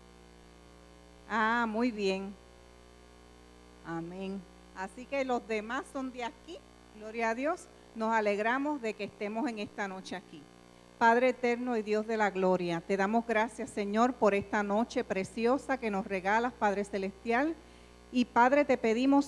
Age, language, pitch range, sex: 50-69, English, 205-255 Hz, female